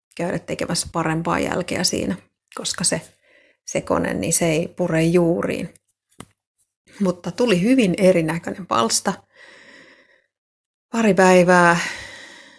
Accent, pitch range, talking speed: native, 165-185 Hz, 100 wpm